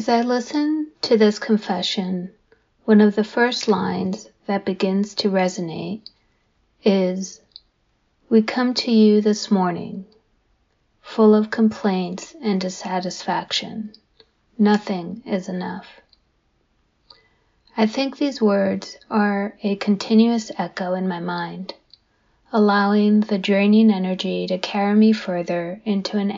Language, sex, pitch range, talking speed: English, female, 190-215 Hz, 115 wpm